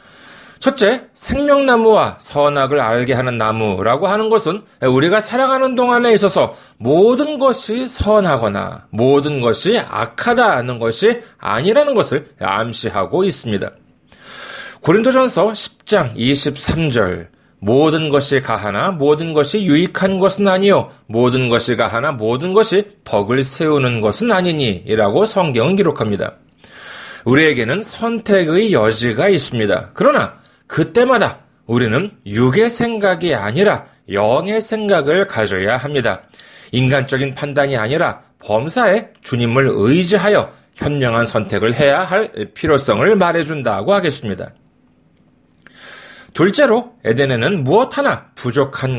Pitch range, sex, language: 120-205 Hz, male, Korean